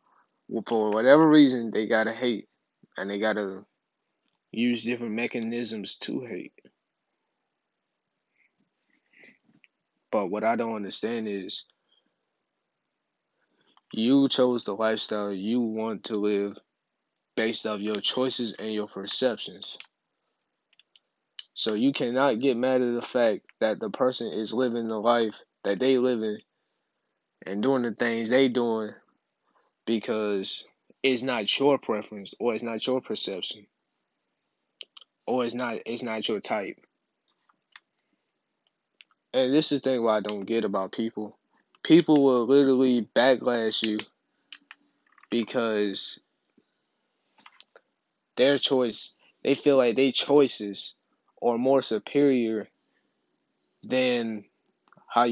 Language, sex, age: English, male, 20-39